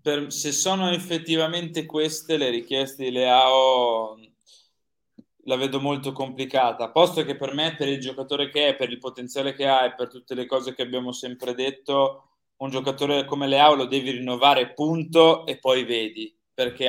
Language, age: Italian, 20-39